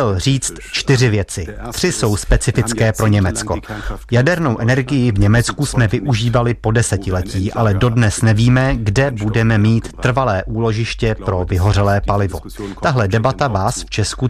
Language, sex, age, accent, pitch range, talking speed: Czech, male, 30-49, native, 105-130 Hz, 135 wpm